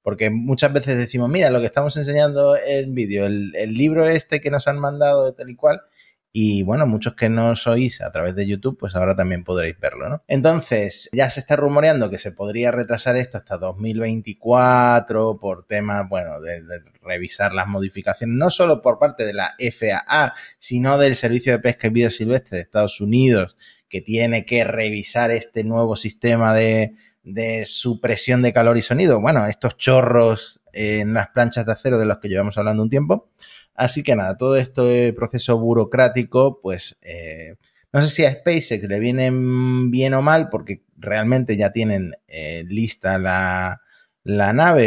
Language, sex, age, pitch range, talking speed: Spanish, male, 30-49, 105-130 Hz, 180 wpm